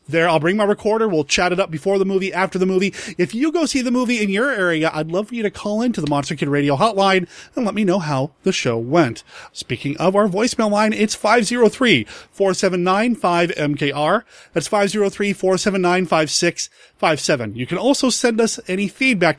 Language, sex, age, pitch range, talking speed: English, male, 30-49, 150-205 Hz, 185 wpm